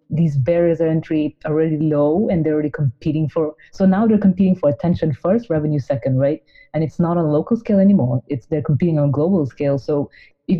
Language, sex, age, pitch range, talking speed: English, female, 30-49, 145-170 Hz, 210 wpm